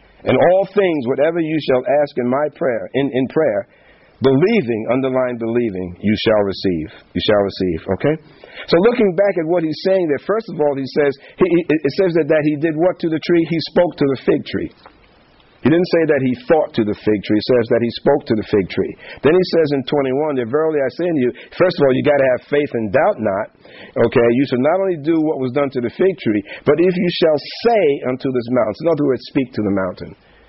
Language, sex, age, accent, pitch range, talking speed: English, male, 50-69, American, 110-150 Hz, 240 wpm